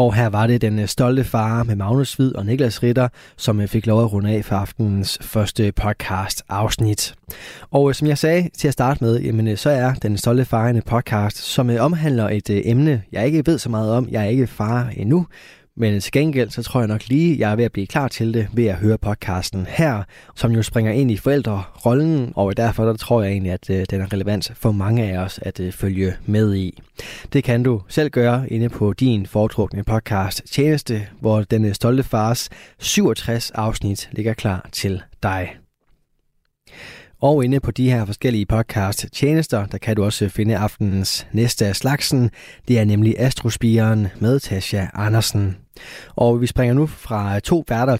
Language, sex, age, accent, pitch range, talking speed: Danish, male, 20-39, native, 105-130 Hz, 185 wpm